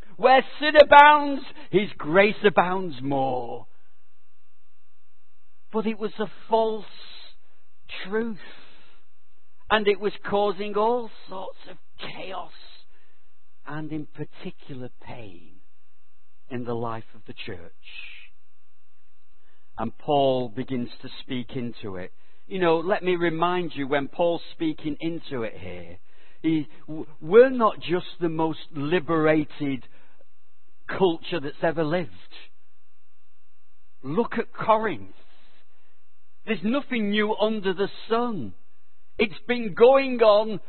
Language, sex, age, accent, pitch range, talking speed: English, male, 60-79, British, 155-225 Hz, 110 wpm